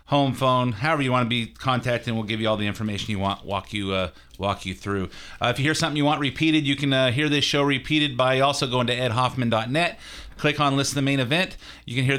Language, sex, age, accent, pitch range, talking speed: English, male, 30-49, American, 130-170 Hz, 250 wpm